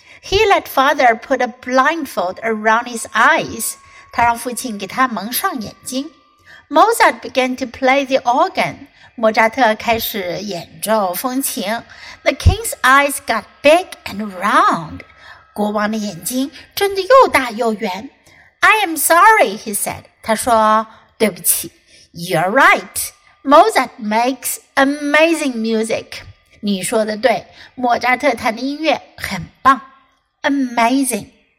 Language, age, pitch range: Chinese, 60-79, 225-295 Hz